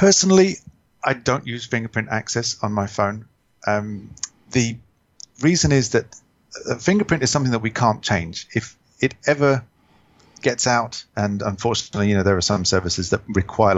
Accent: British